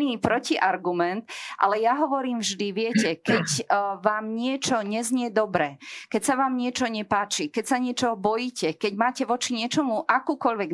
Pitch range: 185-235 Hz